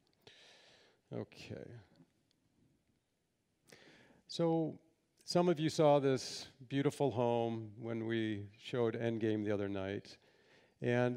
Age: 50-69